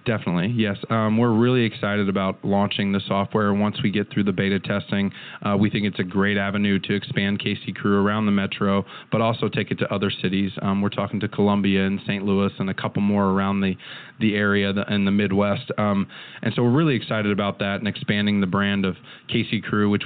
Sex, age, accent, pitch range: male, 20-39, American, 100-110 Hz